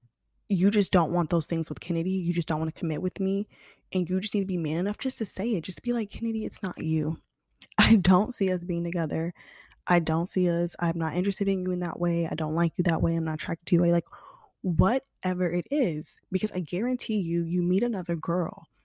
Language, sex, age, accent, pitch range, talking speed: English, female, 20-39, American, 165-200 Hz, 245 wpm